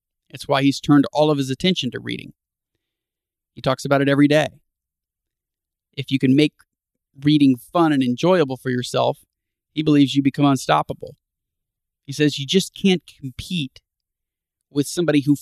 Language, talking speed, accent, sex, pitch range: English, 155 wpm, American, male, 125-145 Hz